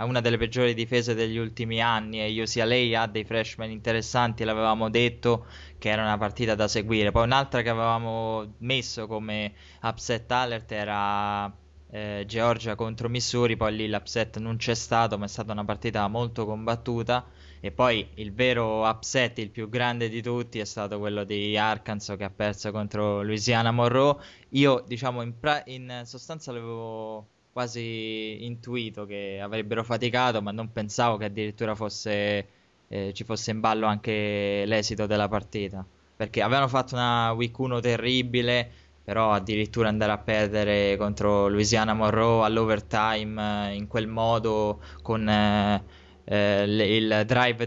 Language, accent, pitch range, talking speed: Italian, native, 105-120 Hz, 150 wpm